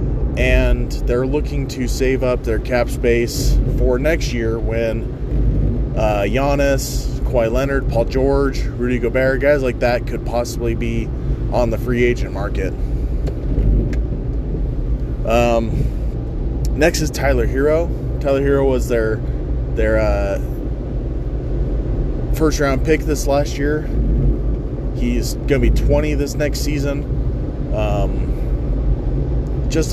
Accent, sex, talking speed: American, male, 120 wpm